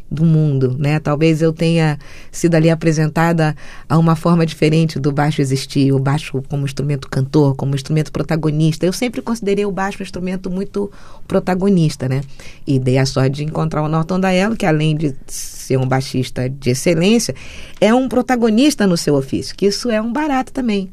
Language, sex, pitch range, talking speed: Portuguese, female, 140-195 Hz, 180 wpm